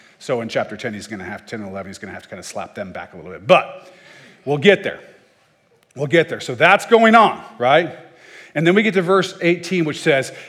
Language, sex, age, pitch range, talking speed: English, male, 40-59, 140-200 Hz, 255 wpm